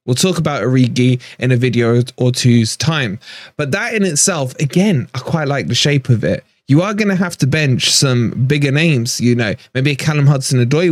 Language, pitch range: English, 125-160 Hz